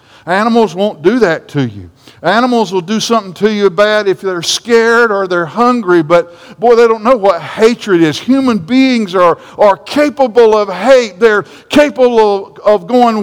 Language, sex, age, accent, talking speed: English, male, 50-69, American, 170 wpm